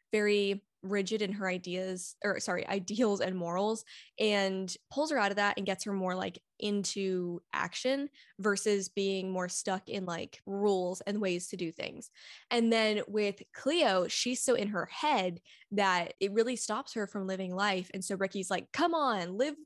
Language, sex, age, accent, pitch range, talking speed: English, female, 10-29, American, 180-215 Hz, 180 wpm